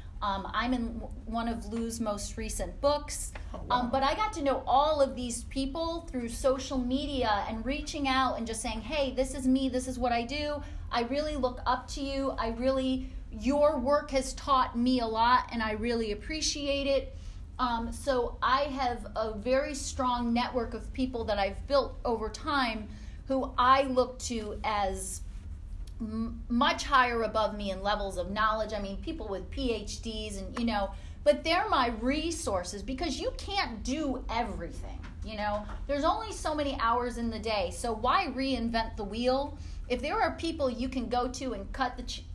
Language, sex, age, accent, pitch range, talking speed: English, female, 30-49, American, 225-270 Hz, 180 wpm